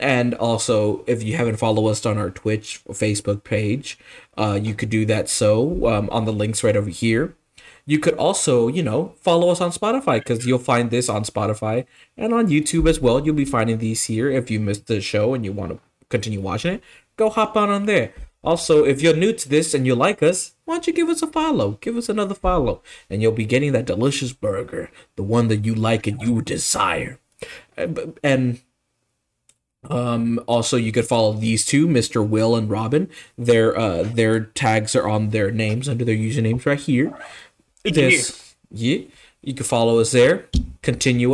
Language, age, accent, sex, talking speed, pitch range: English, 20-39, American, male, 200 wpm, 110-150 Hz